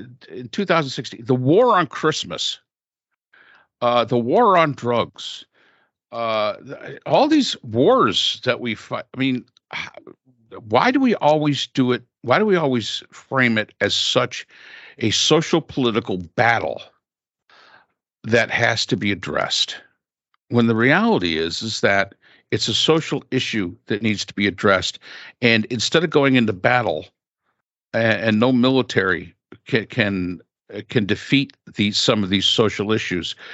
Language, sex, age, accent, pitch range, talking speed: English, male, 60-79, American, 105-130 Hz, 140 wpm